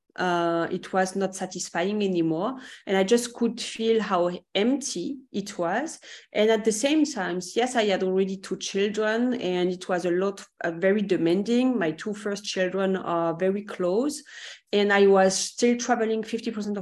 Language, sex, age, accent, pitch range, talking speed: English, female, 40-59, French, 185-230 Hz, 170 wpm